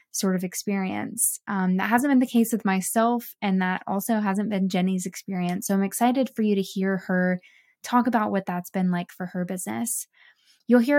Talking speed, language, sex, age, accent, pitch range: 200 wpm, English, female, 20-39, American, 190-235 Hz